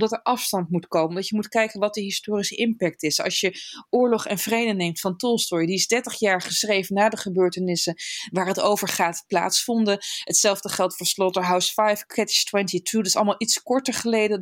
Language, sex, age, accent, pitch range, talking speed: Dutch, female, 20-39, Dutch, 185-225 Hz, 185 wpm